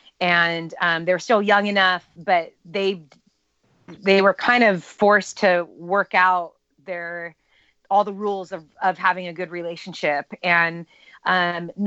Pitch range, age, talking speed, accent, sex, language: 170-195 Hz, 30-49, 140 wpm, American, female, English